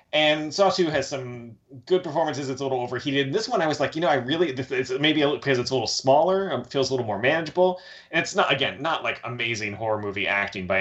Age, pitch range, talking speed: 30-49, 110-135 Hz, 240 wpm